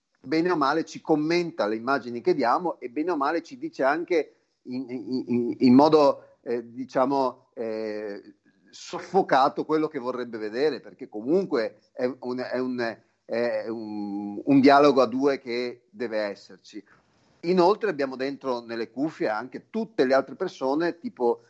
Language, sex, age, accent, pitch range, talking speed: Italian, male, 40-59, native, 115-155 Hz, 150 wpm